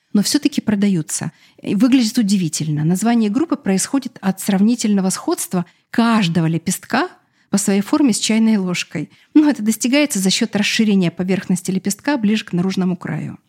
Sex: female